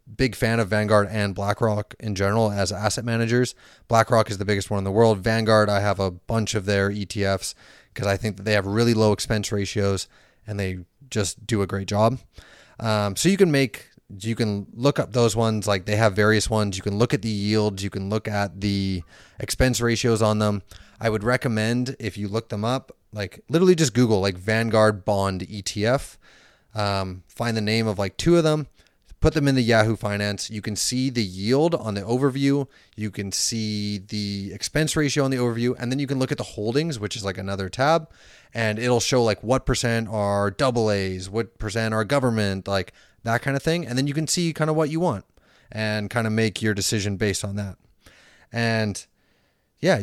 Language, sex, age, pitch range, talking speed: English, male, 30-49, 100-125 Hz, 210 wpm